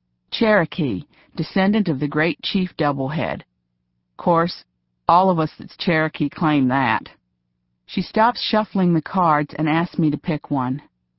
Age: 50-69